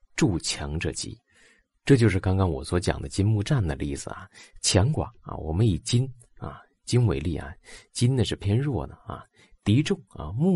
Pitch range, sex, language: 85-130 Hz, male, Chinese